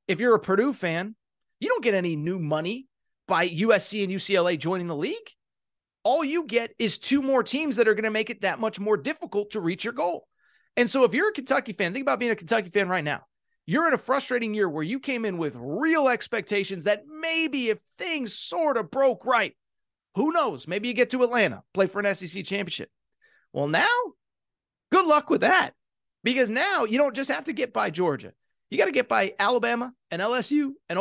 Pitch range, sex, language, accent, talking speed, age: 200-270 Hz, male, English, American, 215 wpm, 30-49